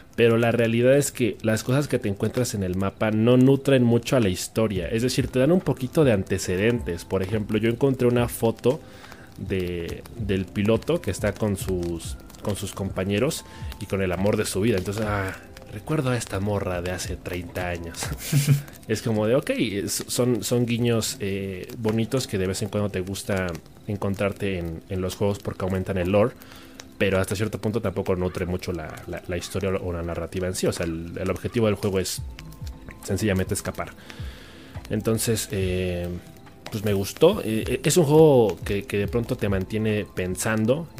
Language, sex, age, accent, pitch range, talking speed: Spanish, male, 30-49, Mexican, 95-115 Hz, 185 wpm